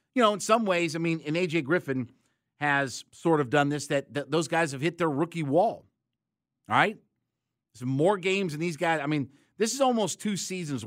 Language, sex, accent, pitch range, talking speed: English, male, American, 130-170 Hz, 210 wpm